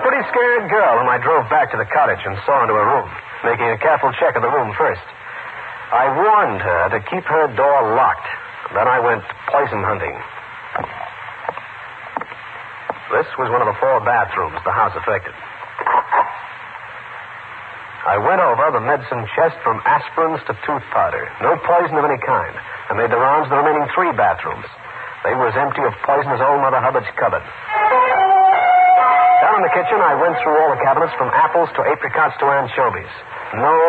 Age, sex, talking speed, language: 50-69, male, 175 wpm, English